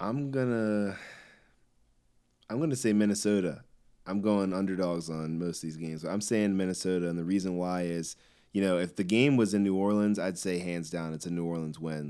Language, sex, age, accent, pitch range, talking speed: English, male, 20-39, American, 85-95 Hz, 200 wpm